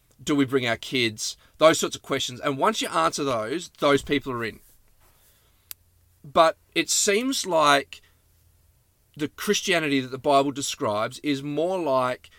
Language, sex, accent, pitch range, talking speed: English, male, Australian, 120-145 Hz, 150 wpm